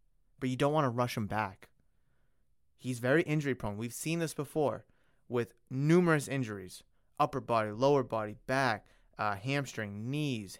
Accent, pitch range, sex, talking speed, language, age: American, 120-160 Hz, male, 155 wpm, English, 30-49